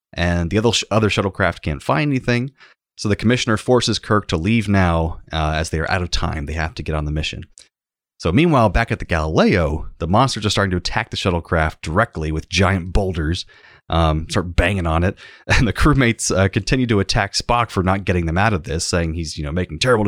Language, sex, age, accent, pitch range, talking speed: English, male, 30-49, American, 80-110 Hz, 225 wpm